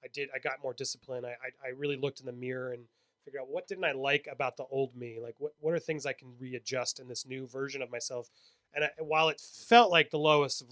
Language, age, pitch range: English, 30-49, 135-170 Hz